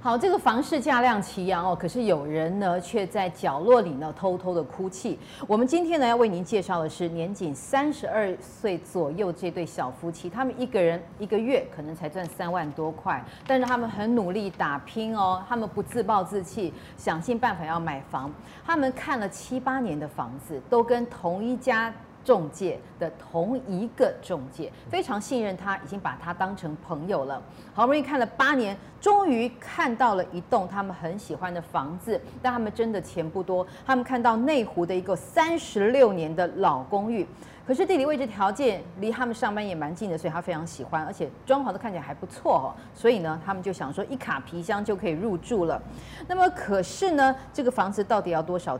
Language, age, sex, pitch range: Chinese, 30-49, female, 170-245 Hz